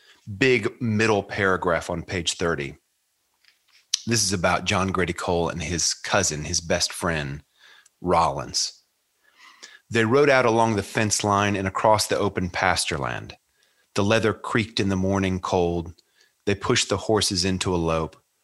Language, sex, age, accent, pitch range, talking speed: English, male, 30-49, American, 90-105 Hz, 145 wpm